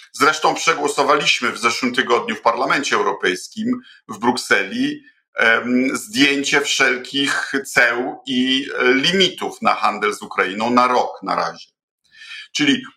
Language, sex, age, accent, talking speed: Polish, male, 50-69, native, 110 wpm